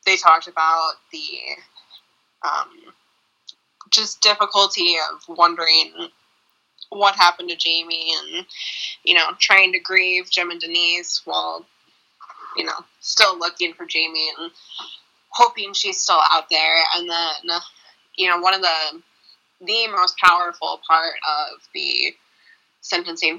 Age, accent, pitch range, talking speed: 20-39, American, 165-205 Hz, 125 wpm